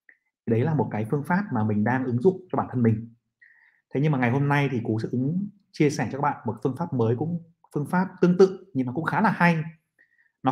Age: 30-49